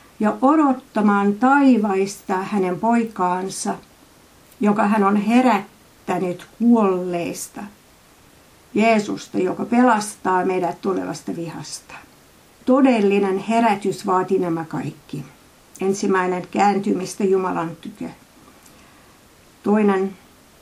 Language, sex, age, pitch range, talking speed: Finnish, female, 60-79, 185-230 Hz, 75 wpm